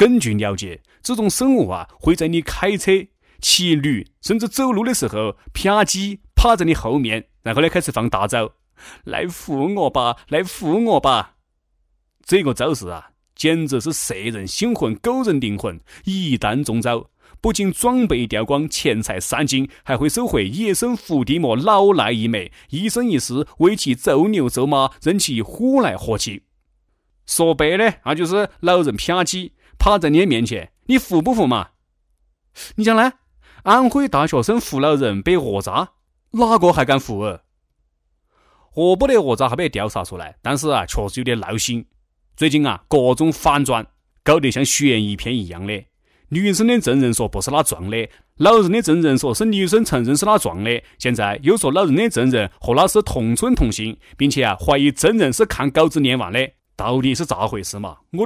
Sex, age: male, 30-49